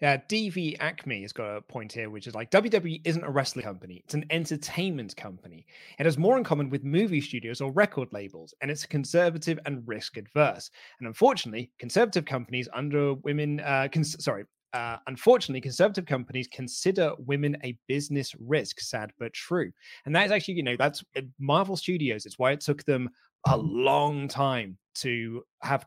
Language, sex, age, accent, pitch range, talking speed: English, male, 30-49, British, 125-165 Hz, 175 wpm